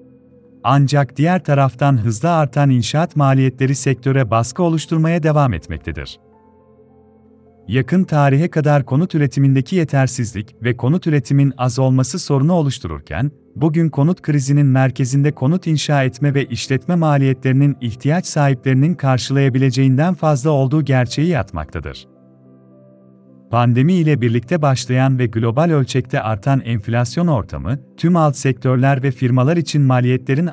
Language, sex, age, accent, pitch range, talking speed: Turkish, male, 40-59, native, 120-150 Hz, 115 wpm